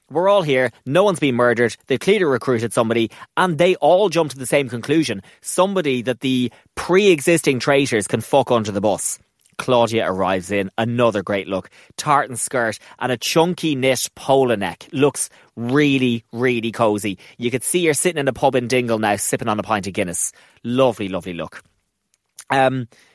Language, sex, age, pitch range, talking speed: English, male, 30-49, 115-155 Hz, 175 wpm